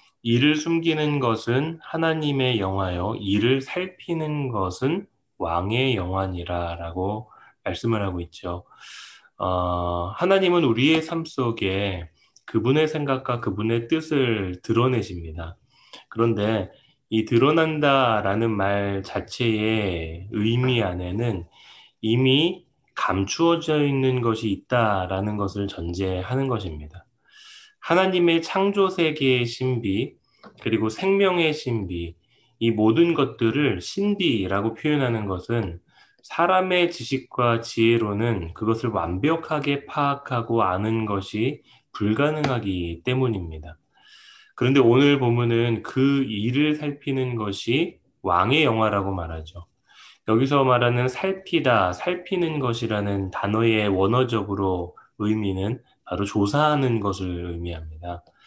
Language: Korean